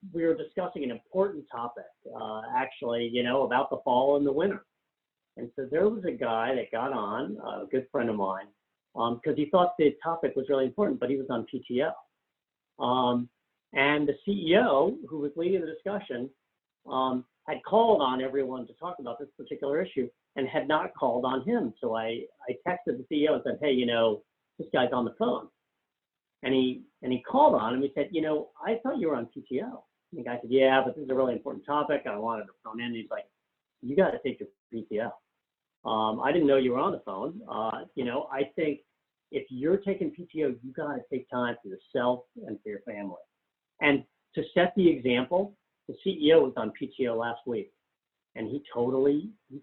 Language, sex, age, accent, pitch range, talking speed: English, male, 50-69, American, 120-160 Hz, 210 wpm